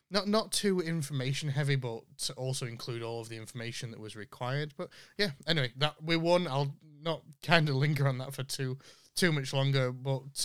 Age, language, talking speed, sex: 20-39, English, 200 wpm, male